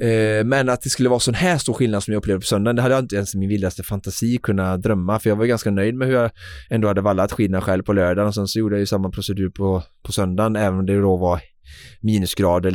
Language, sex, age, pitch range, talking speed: Swedish, male, 20-39, 95-110 Hz, 270 wpm